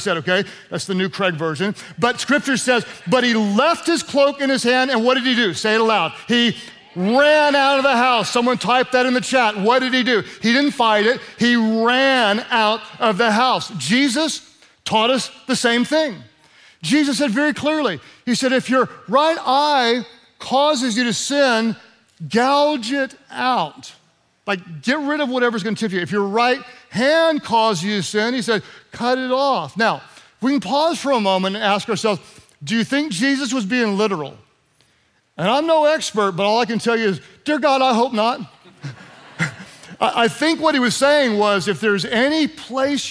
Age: 50-69